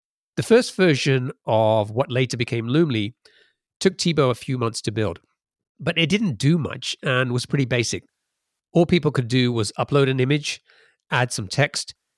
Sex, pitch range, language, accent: male, 110-140 Hz, English, British